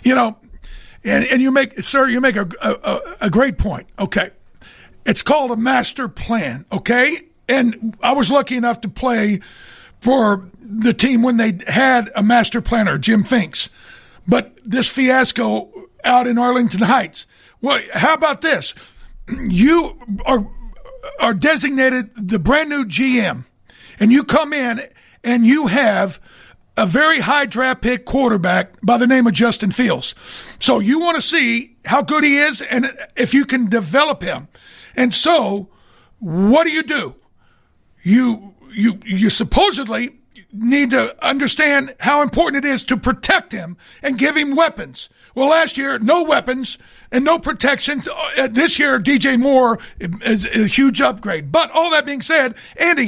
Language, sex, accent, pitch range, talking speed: English, male, American, 230-285 Hz, 155 wpm